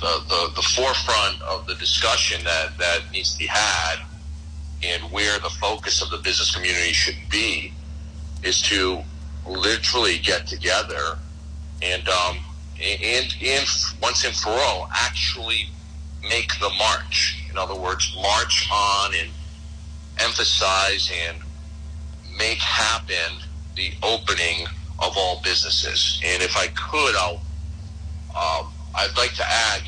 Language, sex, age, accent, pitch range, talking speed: English, male, 40-59, American, 75-85 Hz, 135 wpm